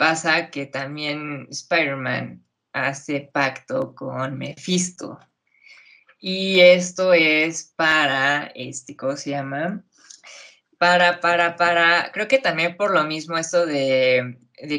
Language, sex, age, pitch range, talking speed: Spanish, female, 20-39, 140-175 Hz, 110 wpm